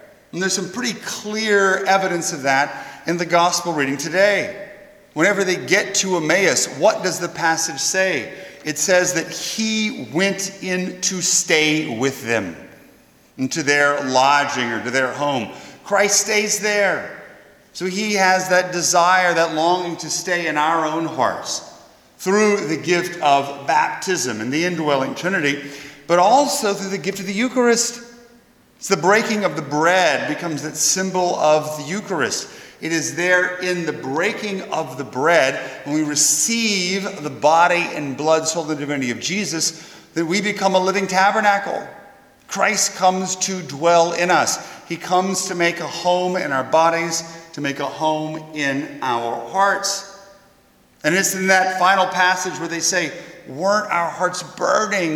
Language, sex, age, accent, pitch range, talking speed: English, male, 40-59, American, 155-195 Hz, 160 wpm